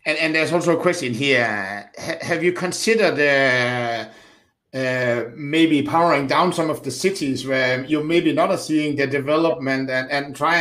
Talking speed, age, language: 170 wpm, 60-79, Danish